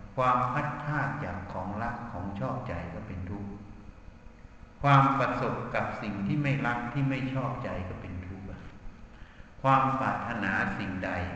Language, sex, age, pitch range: Thai, male, 60-79, 100-135 Hz